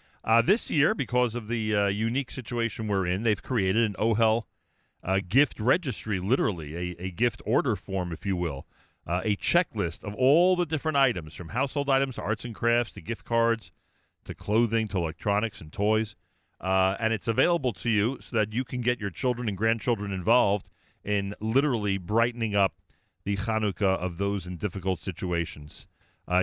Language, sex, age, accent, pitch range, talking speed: English, male, 40-59, American, 90-115 Hz, 180 wpm